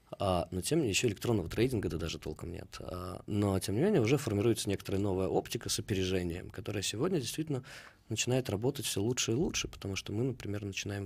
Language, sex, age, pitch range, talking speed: English, male, 20-39, 90-115 Hz, 205 wpm